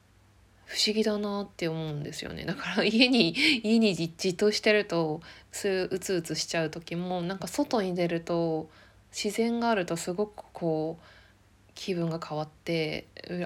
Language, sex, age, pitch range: Japanese, female, 20-39, 145-210 Hz